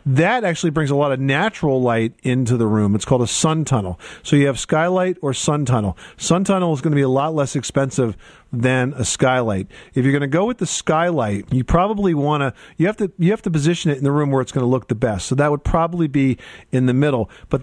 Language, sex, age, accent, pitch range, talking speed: English, male, 50-69, American, 125-155 Hz, 255 wpm